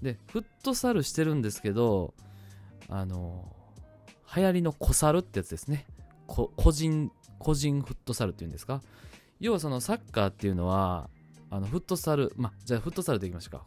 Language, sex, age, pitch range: Japanese, male, 20-39, 95-140 Hz